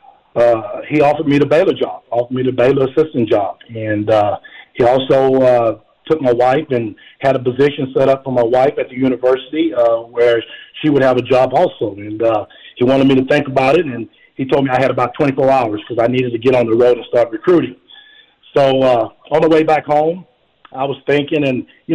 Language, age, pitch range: English, 40-59, 115-135 Hz